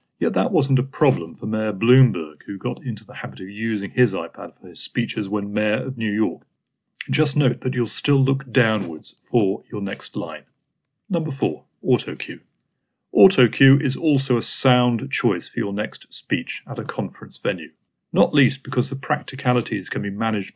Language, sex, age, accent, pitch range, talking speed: English, male, 40-59, British, 110-135 Hz, 180 wpm